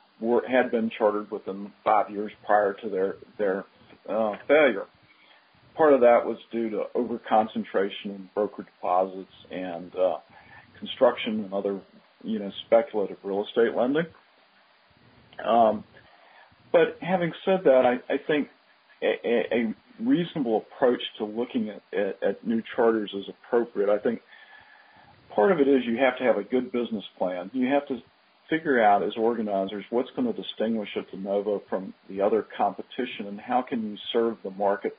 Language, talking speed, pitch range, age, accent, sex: English, 165 wpm, 105-175 Hz, 50-69, American, male